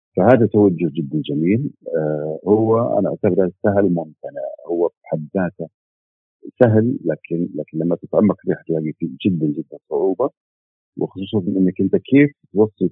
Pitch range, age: 80-105 Hz, 50-69